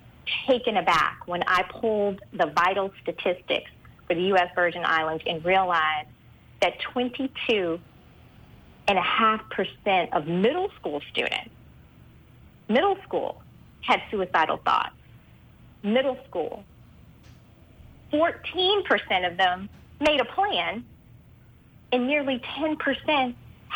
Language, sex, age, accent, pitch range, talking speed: English, female, 40-59, American, 185-250 Hz, 105 wpm